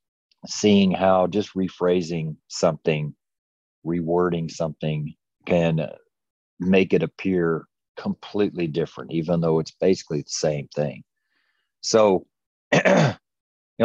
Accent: American